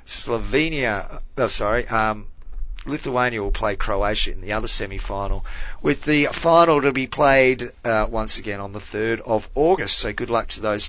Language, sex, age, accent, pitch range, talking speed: English, male, 40-59, Australian, 100-130 Hz, 170 wpm